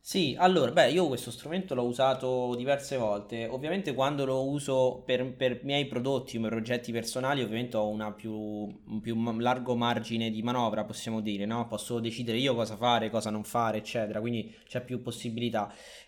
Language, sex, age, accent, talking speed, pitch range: Italian, male, 20-39, native, 190 wpm, 115-140 Hz